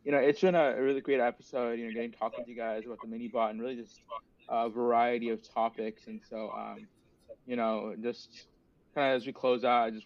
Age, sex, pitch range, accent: 20-39, male, 115-130 Hz, American